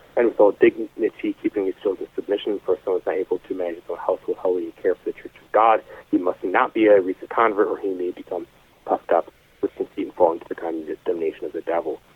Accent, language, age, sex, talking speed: American, English, 30-49, male, 255 wpm